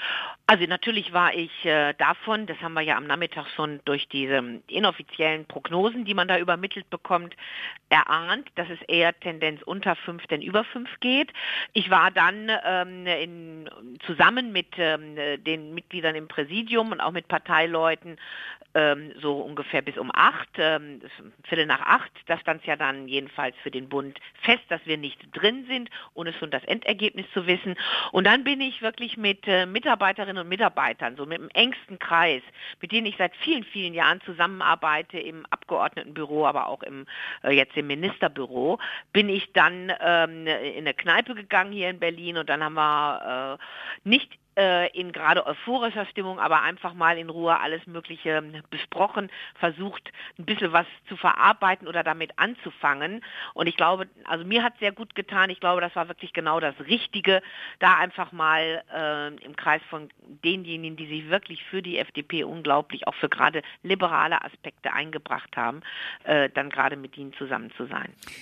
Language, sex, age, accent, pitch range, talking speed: German, female, 50-69, German, 155-195 Hz, 170 wpm